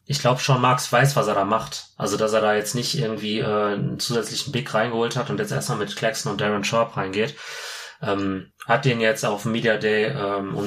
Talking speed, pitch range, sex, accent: 220 wpm, 105-135 Hz, male, German